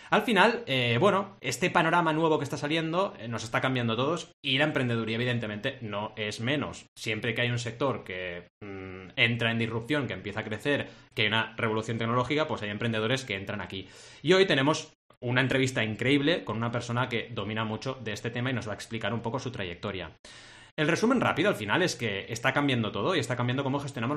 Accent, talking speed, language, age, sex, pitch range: Spanish, 215 wpm, Spanish, 30-49, male, 110-140 Hz